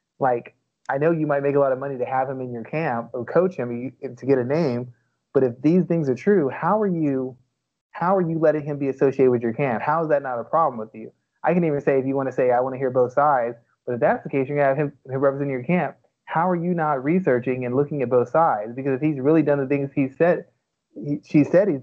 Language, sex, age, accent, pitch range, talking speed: English, male, 30-49, American, 130-160 Hz, 280 wpm